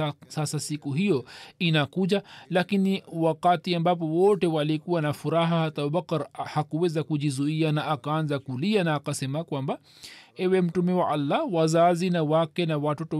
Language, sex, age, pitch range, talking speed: Swahili, male, 40-59, 150-180 Hz, 125 wpm